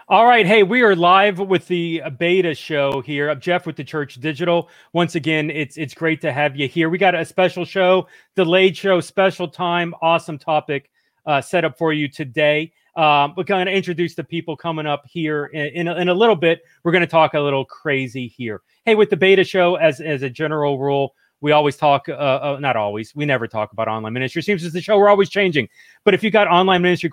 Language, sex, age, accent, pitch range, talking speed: English, male, 30-49, American, 135-175 Hz, 230 wpm